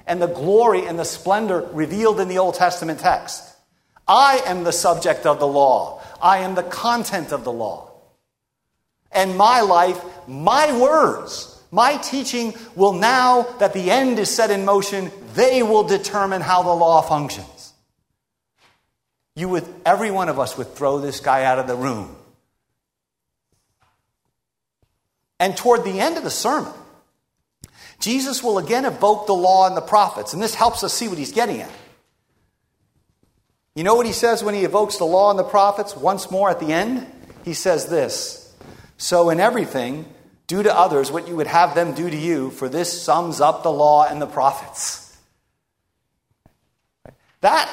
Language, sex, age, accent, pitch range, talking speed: English, male, 50-69, American, 155-210 Hz, 165 wpm